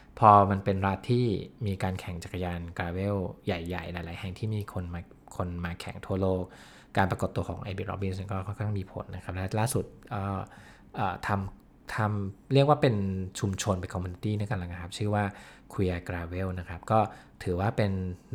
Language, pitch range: Thai, 90-110 Hz